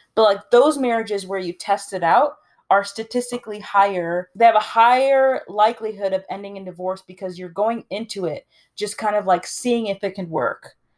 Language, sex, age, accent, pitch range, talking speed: English, female, 30-49, American, 190-235 Hz, 190 wpm